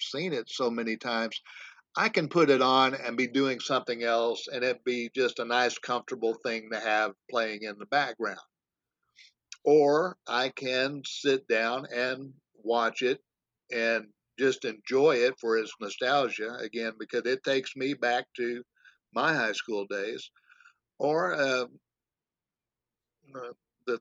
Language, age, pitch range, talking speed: English, 60-79, 115-145 Hz, 145 wpm